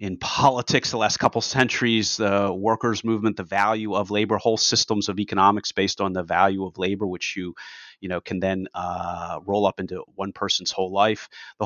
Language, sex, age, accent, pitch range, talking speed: English, male, 30-49, American, 100-125 Hz, 205 wpm